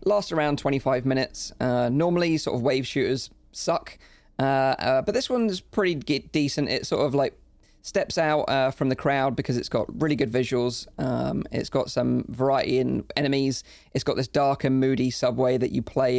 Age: 20-39